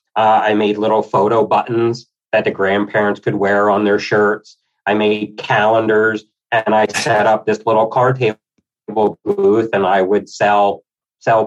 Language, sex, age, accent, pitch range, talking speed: English, male, 40-59, American, 105-125 Hz, 160 wpm